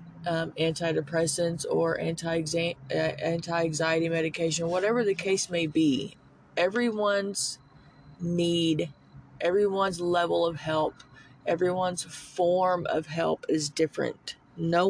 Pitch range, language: 160-190 Hz, English